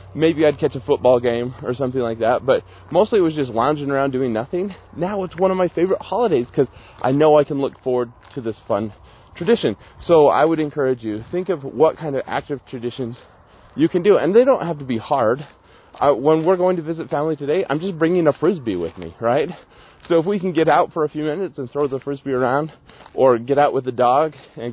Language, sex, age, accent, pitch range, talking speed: English, male, 20-39, American, 120-165 Hz, 235 wpm